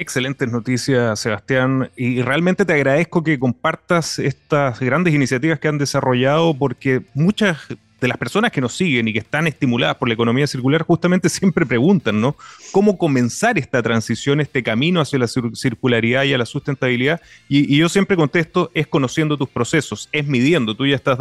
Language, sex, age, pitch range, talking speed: Spanish, male, 30-49, 130-160 Hz, 175 wpm